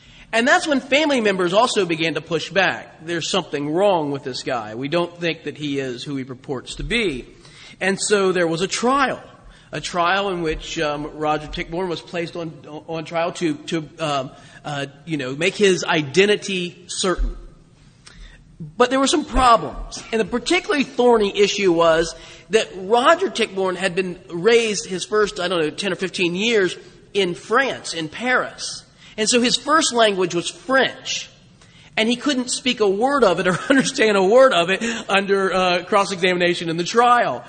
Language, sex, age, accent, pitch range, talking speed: English, male, 40-59, American, 160-220 Hz, 180 wpm